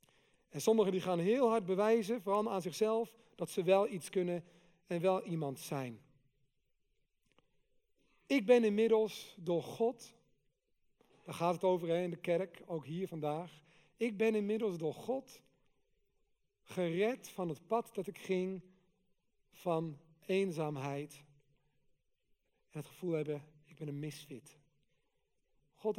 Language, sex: Dutch, male